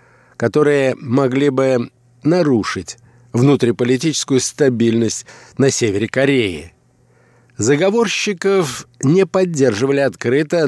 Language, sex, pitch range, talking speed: Russian, male, 120-150 Hz, 75 wpm